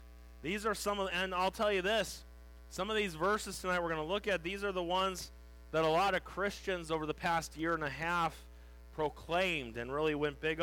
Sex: male